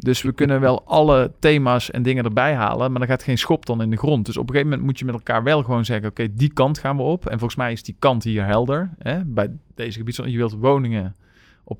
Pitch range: 110-130 Hz